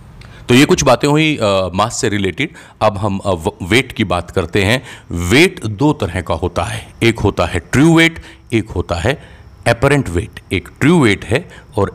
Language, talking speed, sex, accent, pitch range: Hindi, 190 wpm, male, native, 95-125 Hz